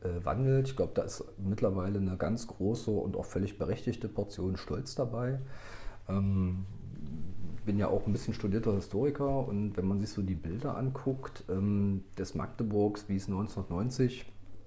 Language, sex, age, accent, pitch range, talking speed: German, male, 40-59, German, 95-110 Hz, 150 wpm